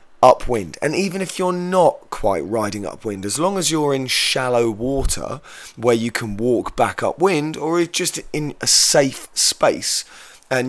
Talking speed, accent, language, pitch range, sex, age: 170 wpm, British, English, 110-155 Hz, male, 20-39